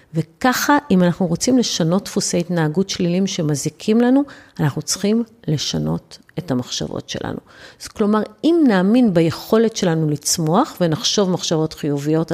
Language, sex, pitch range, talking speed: Hebrew, female, 160-225 Hz, 125 wpm